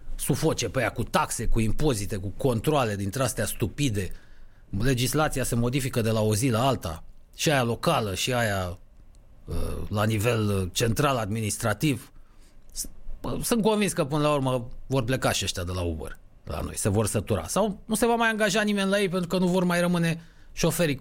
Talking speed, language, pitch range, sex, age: 180 wpm, Romanian, 105-170 Hz, male, 30-49